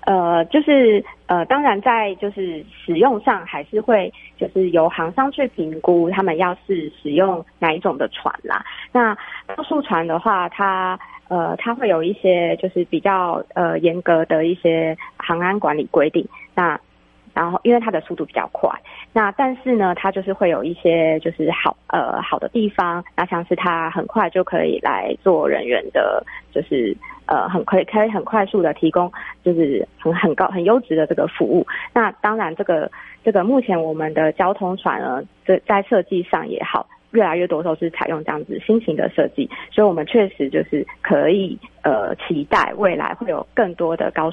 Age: 20-39